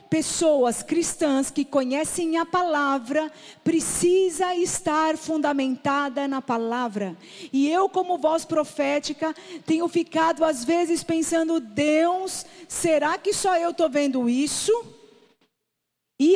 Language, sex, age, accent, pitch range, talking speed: Portuguese, female, 40-59, Brazilian, 275-340 Hz, 110 wpm